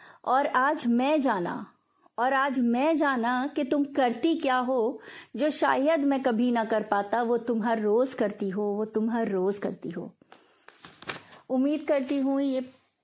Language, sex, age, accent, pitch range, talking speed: English, female, 30-49, Indian, 215-260 Hz, 165 wpm